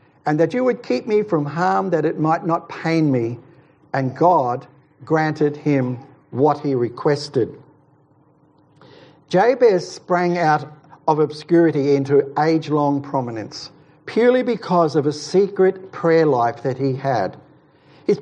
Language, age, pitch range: English, 60-79, 140-180 Hz